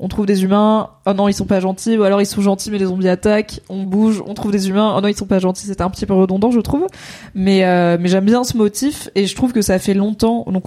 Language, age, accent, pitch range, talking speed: French, 20-39, French, 190-225 Hz, 300 wpm